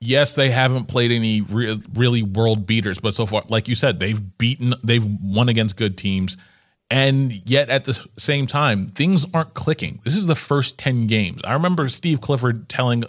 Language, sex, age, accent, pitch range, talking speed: English, male, 30-49, American, 110-135 Hz, 190 wpm